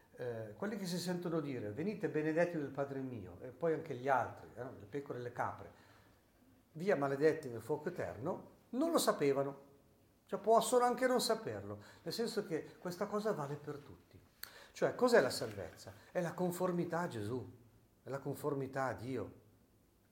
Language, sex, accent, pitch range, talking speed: Italian, male, native, 115-180 Hz, 165 wpm